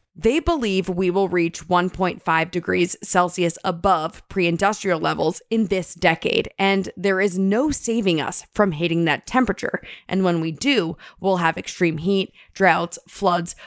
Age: 20-39